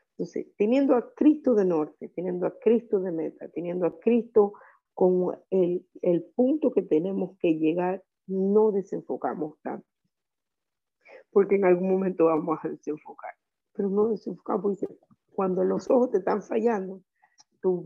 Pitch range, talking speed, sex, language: 175-220 Hz, 145 wpm, female, Spanish